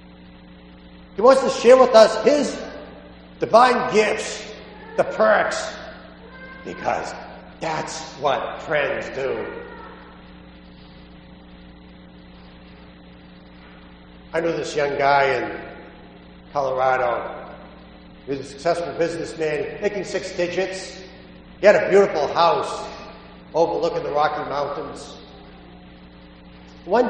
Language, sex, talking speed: English, male, 90 wpm